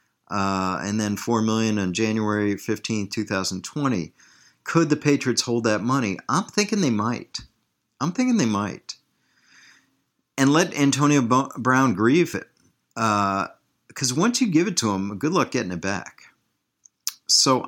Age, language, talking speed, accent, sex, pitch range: 50-69, English, 150 wpm, American, male, 100-125 Hz